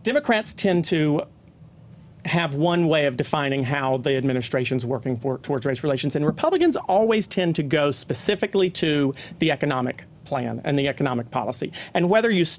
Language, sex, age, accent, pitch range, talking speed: English, male, 40-59, American, 140-175 Hz, 160 wpm